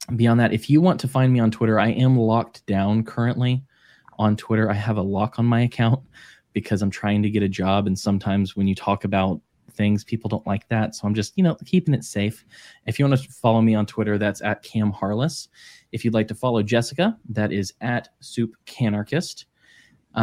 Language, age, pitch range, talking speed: English, 20-39, 100-125 Hz, 215 wpm